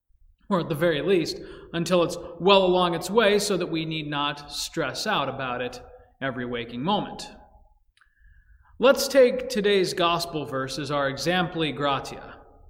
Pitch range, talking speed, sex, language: 165-255 Hz, 150 wpm, male, English